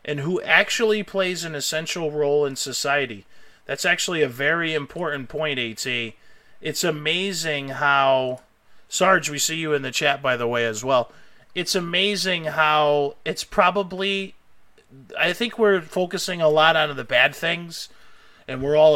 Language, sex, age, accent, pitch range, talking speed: English, male, 30-49, American, 135-185 Hz, 155 wpm